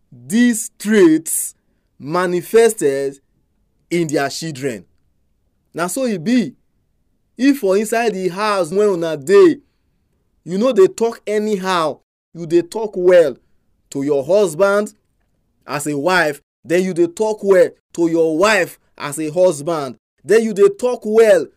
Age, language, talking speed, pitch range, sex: 20-39, English, 140 wpm, 145-220 Hz, male